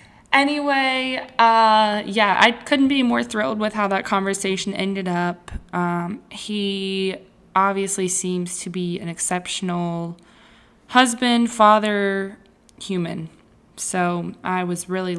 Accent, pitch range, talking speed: American, 180-225 Hz, 115 wpm